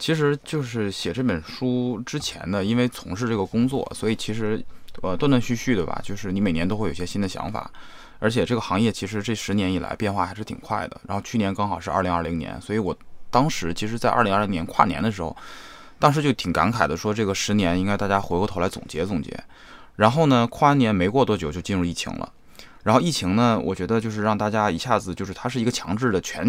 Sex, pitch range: male, 90-115 Hz